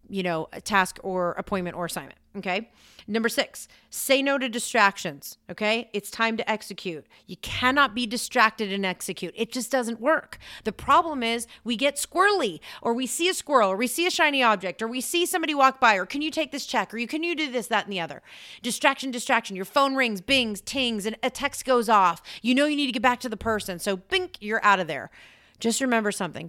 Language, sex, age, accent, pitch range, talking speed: English, female, 30-49, American, 195-250 Hz, 225 wpm